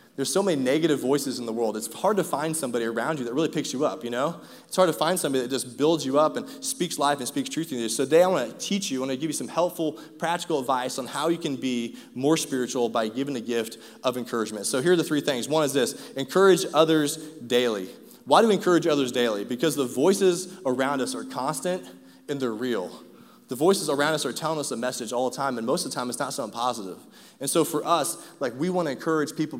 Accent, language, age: American, English, 20-39